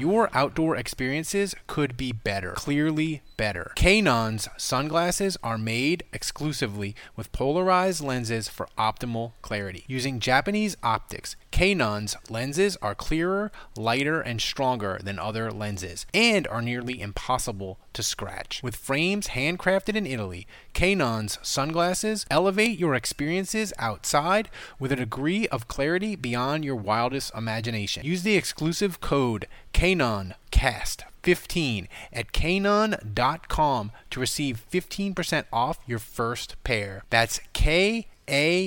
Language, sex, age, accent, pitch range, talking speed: English, male, 30-49, American, 110-165 Hz, 120 wpm